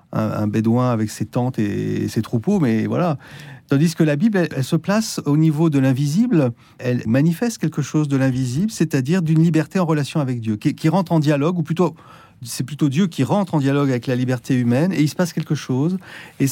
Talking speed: 220 wpm